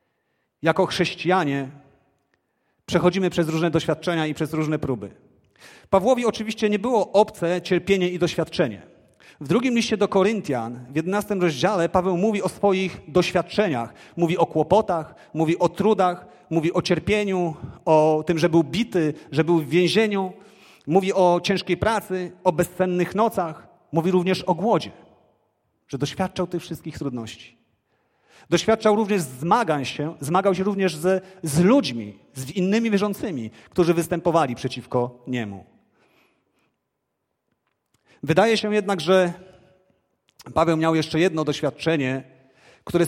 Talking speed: 125 wpm